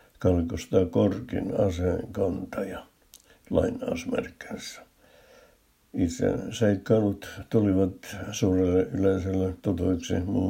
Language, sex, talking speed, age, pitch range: Finnish, male, 65 wpm, 60-79, 90-105 Hz